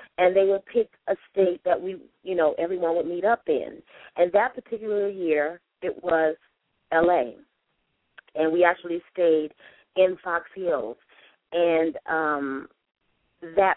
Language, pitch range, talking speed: English, 160-195 Hz, 140 wpm